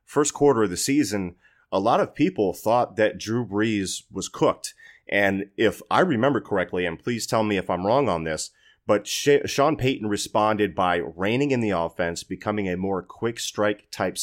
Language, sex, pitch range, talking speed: English, male, 90-110 Hz, 185 wpm